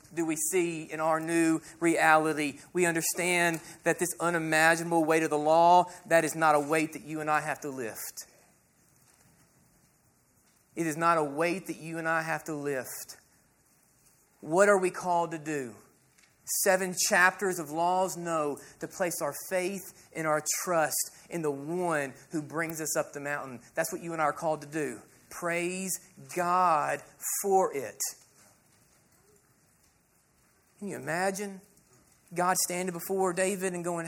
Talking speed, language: 155 wpm, English